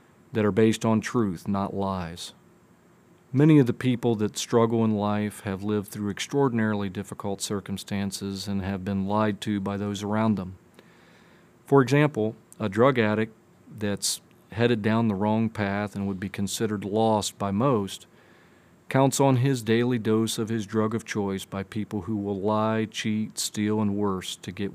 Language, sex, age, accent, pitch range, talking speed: English, male, 40-59, American, 100-110 Hz, 165 wpm